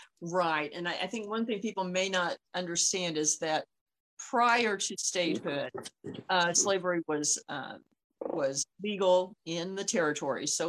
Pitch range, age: 155-185 Hz, 50-69